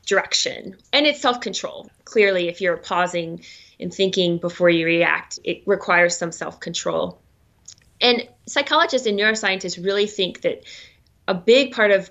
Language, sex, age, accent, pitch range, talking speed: English, female, 30-49, American, 180-230 Hz, 140 wpm